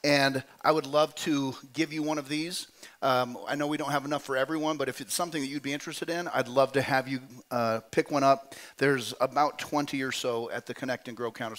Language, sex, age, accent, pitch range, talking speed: English, male, 40-59, American, 125-145 Hz, 250 wpm